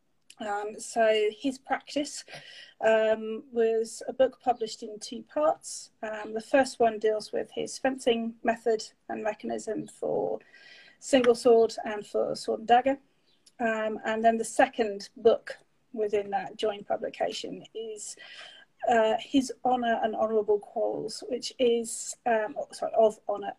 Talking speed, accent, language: 135 wpm, British, English